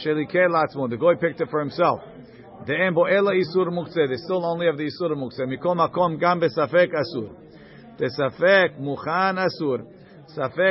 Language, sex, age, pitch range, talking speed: English, male, 50-69, 135-170 Hz, 120 wpm